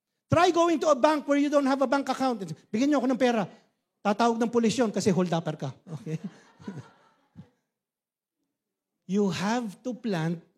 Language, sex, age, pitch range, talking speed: English, male, 50-69, 185-285 Hz, 115 wpm